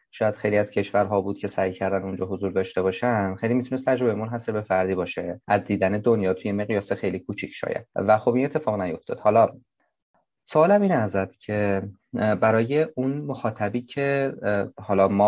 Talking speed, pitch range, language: 175 wpm, 95-115 Hz, Persian